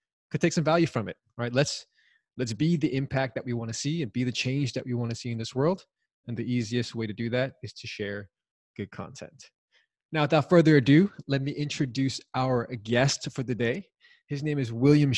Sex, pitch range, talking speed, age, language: male, 120-150 Hz, 225 wpm, 20-39, English